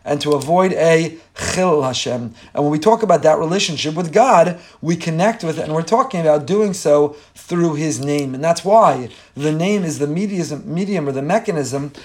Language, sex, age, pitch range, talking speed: English, male, 30-49, 145-170 Hz, 200 wpm